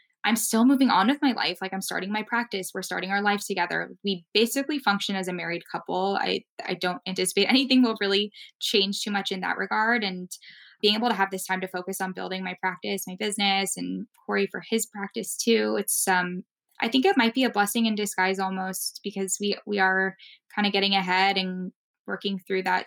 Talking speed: 215 wpm